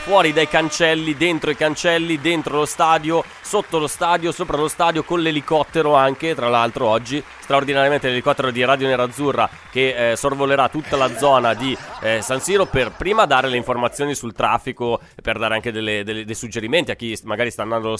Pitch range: 115-155 Hz